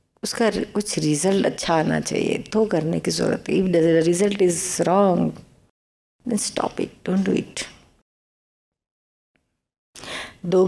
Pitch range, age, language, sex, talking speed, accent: 155-185 Hz, 50-69, Hindi, female, 125 wpm, native